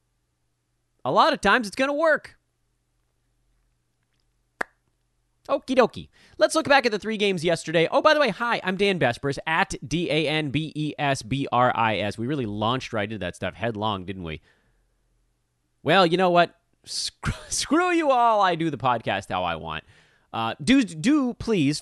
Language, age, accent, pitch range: English, 30-49, American, 105-170 Hz